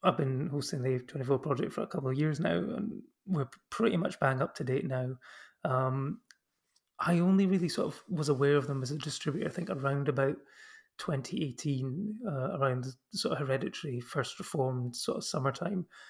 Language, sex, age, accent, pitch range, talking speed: English, male, 30-49, British, 135-185 Hz, 185 wpm